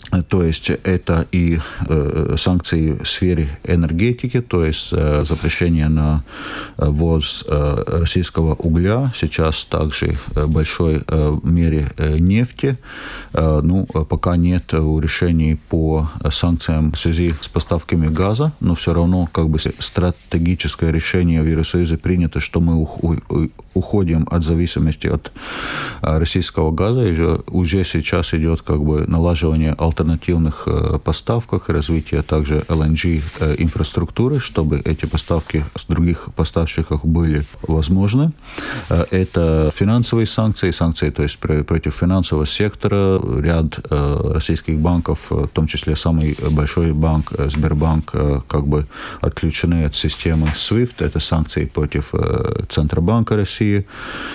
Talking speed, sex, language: 120 wpm, male, Russian